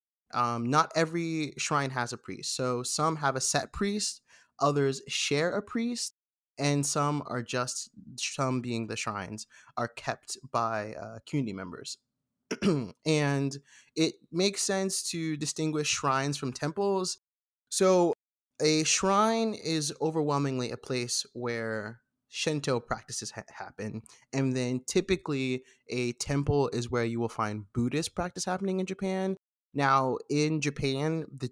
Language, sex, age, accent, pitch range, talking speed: English, male, 20-39, American, 120-165 Hz, 135 wpm